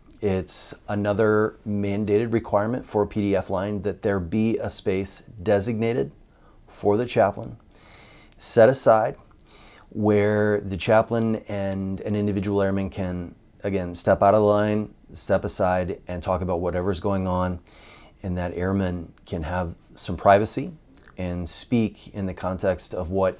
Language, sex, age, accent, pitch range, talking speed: English, male, 30-49, American, 95-105 Hz, 140 wpm